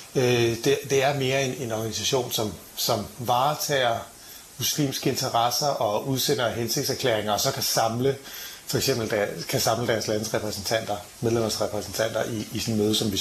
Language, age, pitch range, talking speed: Danish, 30-49, 110-135 Hz, 130 wpm